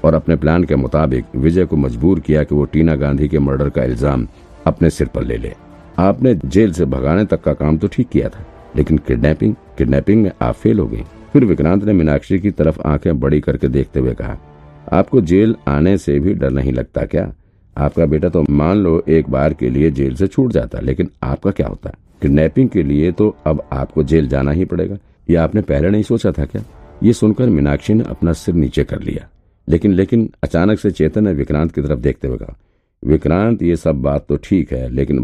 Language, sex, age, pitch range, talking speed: Hindi, male, 50-69, 70-95 Hz, 210 wpm